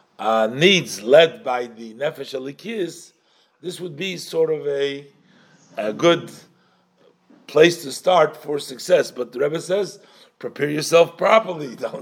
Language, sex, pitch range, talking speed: English, male, 125-175 Hz, 135 wpm